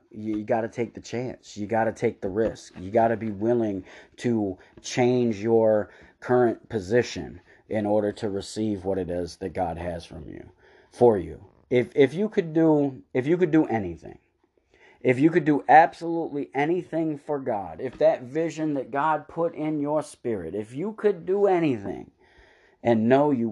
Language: English